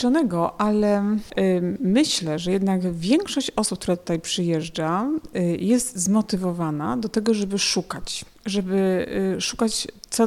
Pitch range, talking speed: 185-230 Hz, 125 wpm